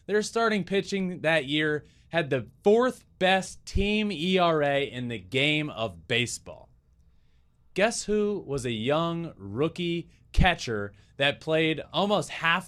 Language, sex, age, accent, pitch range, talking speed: English, male, 20-39, American, 120-180 Hz, 125 wpm